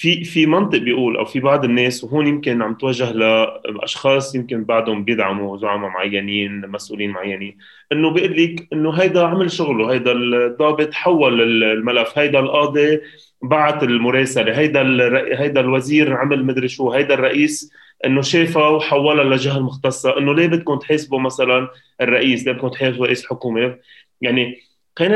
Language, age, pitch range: Arabic, 20-39, 120-150 Hz